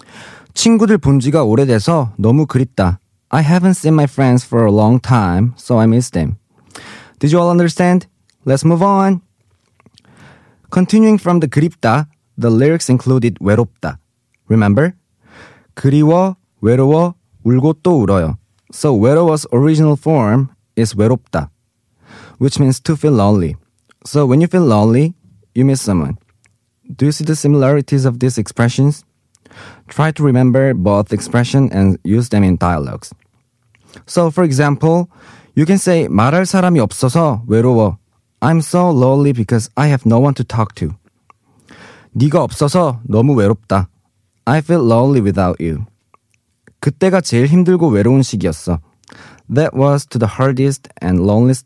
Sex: male